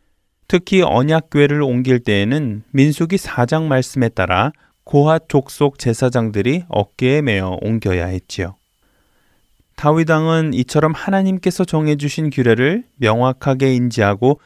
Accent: native